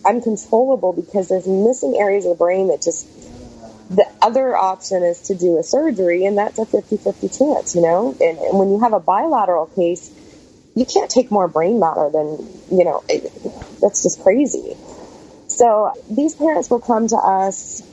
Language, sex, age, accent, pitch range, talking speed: English, female, 20-39, American, 180-275 Hz, 175 wpm